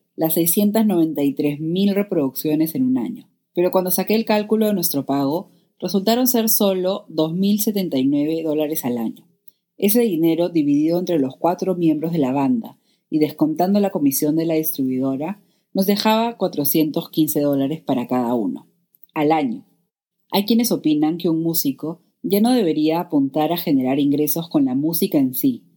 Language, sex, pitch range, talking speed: Spanish, female, 150-195 Hz, 150 wpm